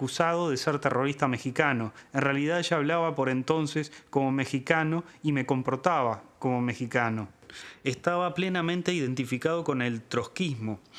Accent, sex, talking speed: Argentinian, male, 125 wpm